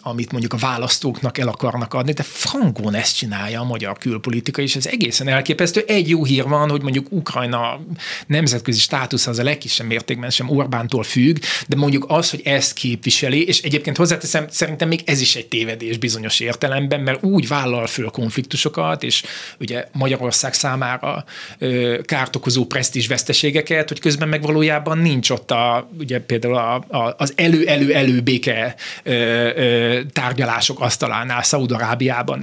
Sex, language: male, Hungarian